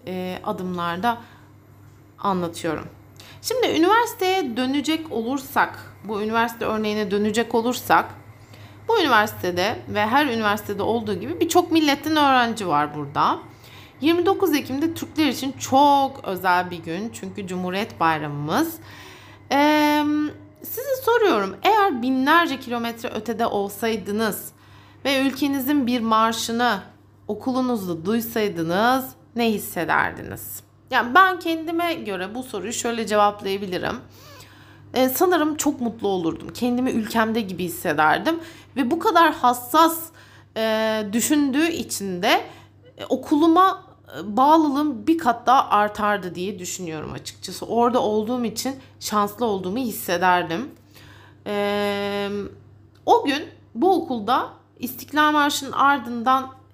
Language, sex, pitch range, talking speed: Turkish, female, 195-290 Hz, 105 wpm